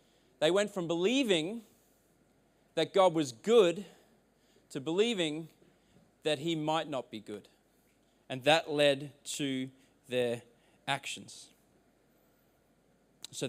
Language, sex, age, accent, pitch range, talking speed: English, male, 30-49, Australian, 140-185 Hz, 100 wpm